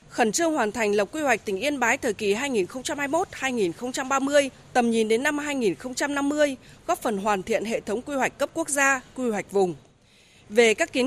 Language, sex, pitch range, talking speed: Vietnamese, female, 210-285 Hz, 190 wpm